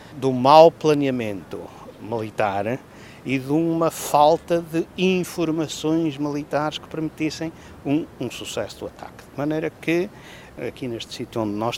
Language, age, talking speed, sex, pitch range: English, 60-79, 135 wpm, male, 115-155 Hz